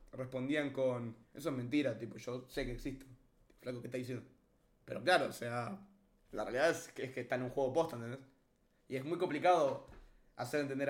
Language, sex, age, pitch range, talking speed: Spanish, male, 20-39, 125-150 Hz, 200 wpm